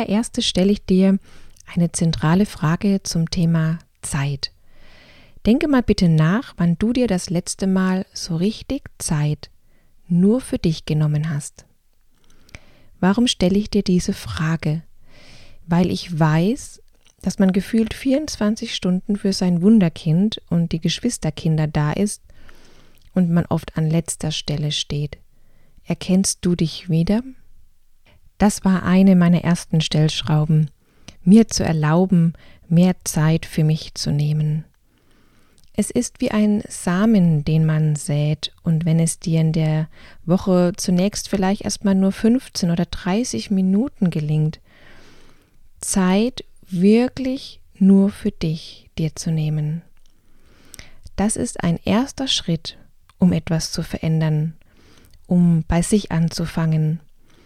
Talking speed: 125 wpm